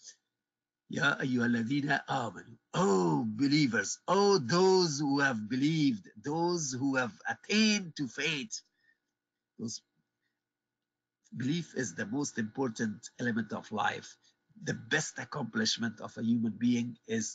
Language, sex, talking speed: English, male, 100 wpm